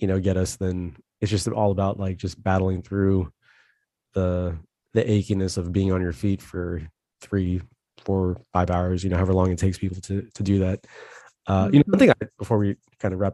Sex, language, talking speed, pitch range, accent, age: male, English, 215 wpm, 95-110 Hz, American, 20-39